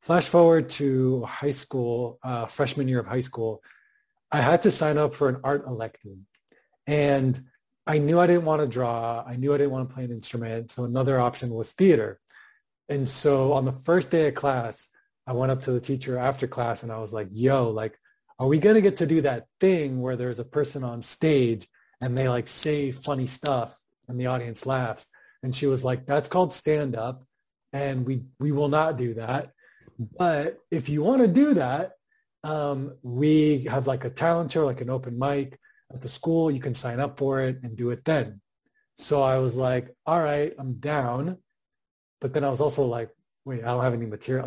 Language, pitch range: English, 120-150 Hz